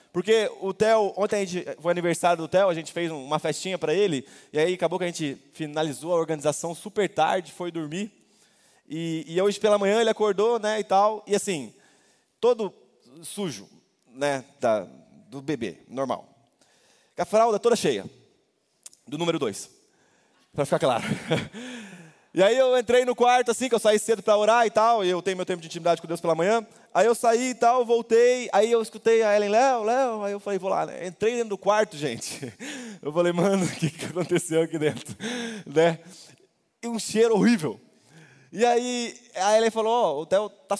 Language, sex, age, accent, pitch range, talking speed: Portuguese, male, 20-39, Brazilian, 165-225 Hz, 190 wpm